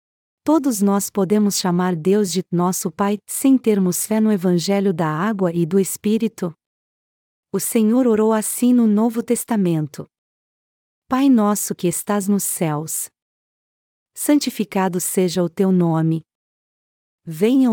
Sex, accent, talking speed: female, Brazilian, 125 wpm